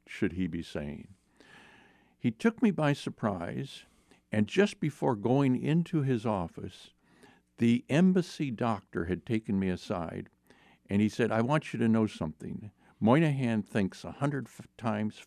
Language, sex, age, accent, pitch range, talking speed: English, male, 60-79, American, 95-125 Hz, 145 wpm